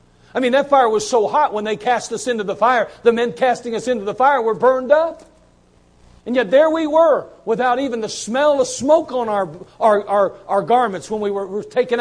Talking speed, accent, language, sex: 230 wpm, American, English, male